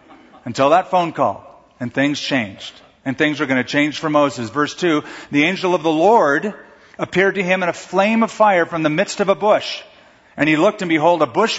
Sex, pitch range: male, 145-195 Hz